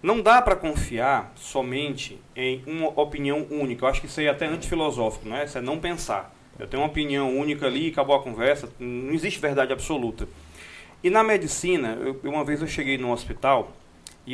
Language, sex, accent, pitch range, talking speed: Portuguese, male, Brazilian, 130-175 Hz, 195 wpm